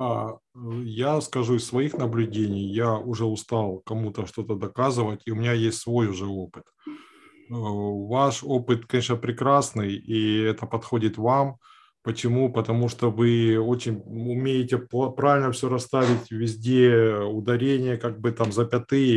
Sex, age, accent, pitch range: male, 20-39, native, 115-150 Hz